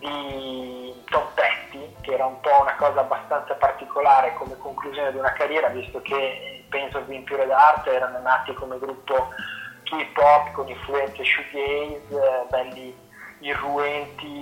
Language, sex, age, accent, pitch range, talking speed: Italian, male, 20-39, native, 130-150 Hz, 135 wpm